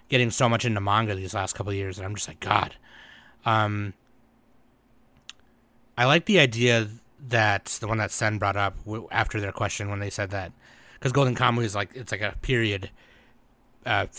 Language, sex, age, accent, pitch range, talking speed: English, male, 30-49, American, 105-130 Hz, 185 wpm